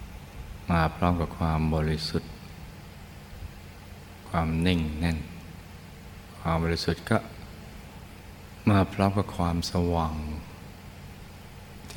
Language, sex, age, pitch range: Thai, male, 60-79, 80-95 Hz